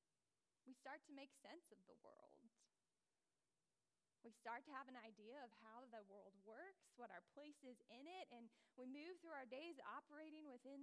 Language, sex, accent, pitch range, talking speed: English, female, American, 230-275 Hz, 185 wpm